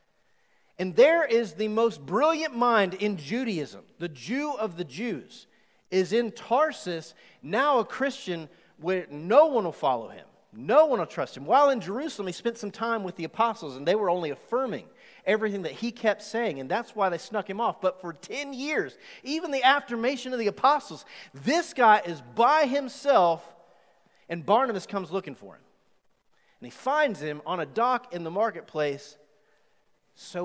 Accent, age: American, 40-59